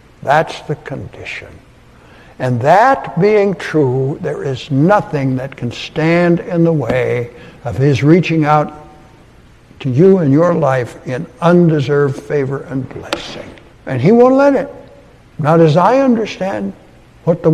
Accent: American